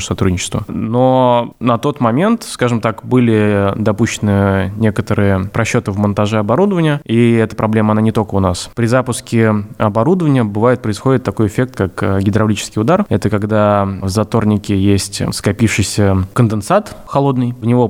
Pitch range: 105-125 Hz